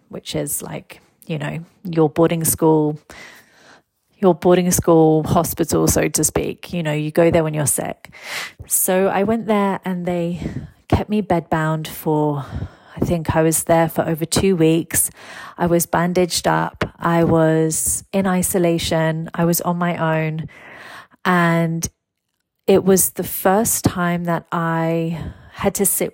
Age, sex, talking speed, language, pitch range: 30-49, female, 150 wpm, English, 160-185 Hz